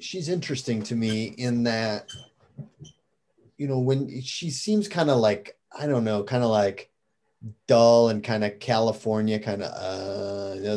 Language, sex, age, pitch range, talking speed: English, male, 30-49, 105-125 Hz, 160 wpm